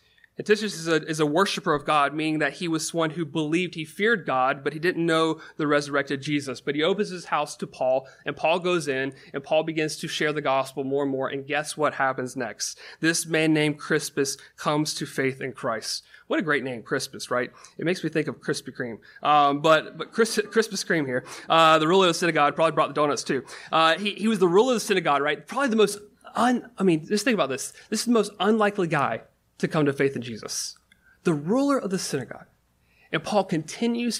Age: 30-49